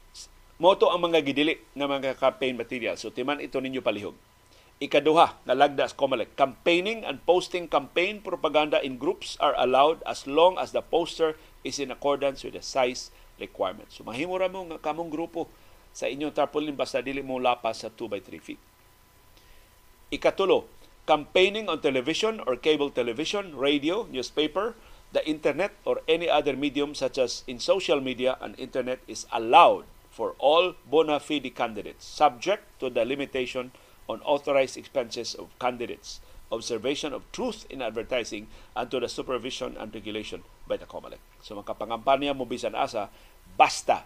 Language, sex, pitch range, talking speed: Filipino, male, 125-160 Hz, 155 wpm